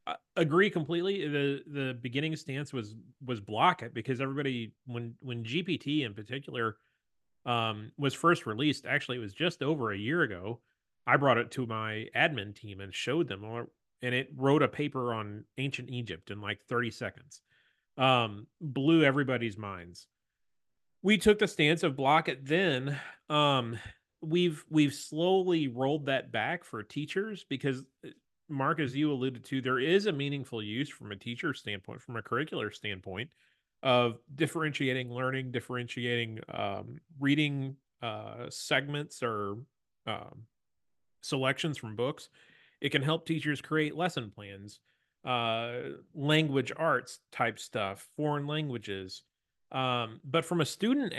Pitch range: 115-150 Hz